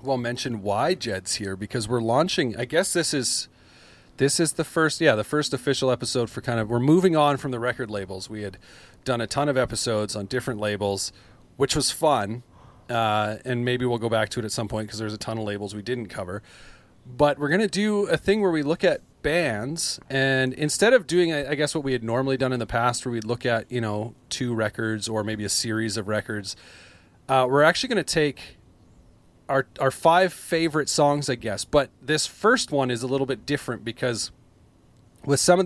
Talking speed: 220 wpm